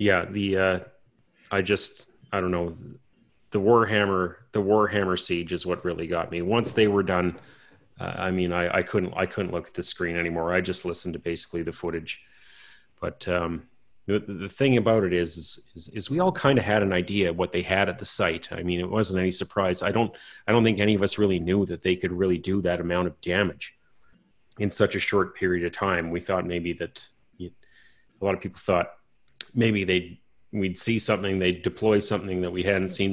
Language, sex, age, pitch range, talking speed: English, male, 30-49, 90-100 Hz, 215 wpm